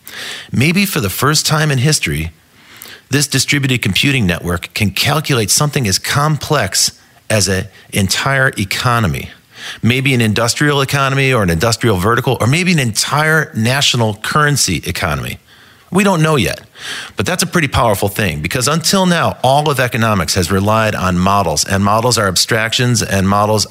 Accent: American